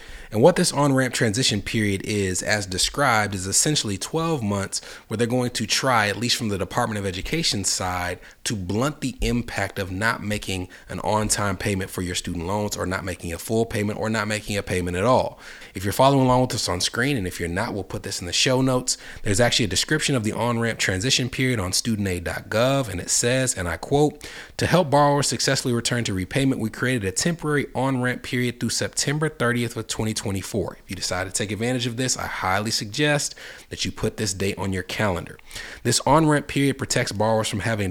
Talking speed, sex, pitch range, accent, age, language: 210 wpm, male, 95-125 Hz, American, 30-49, English